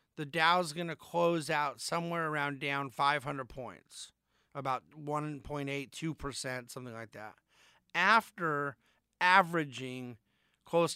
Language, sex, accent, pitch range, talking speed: English, male, American, 130-160 Hz, 105 wpm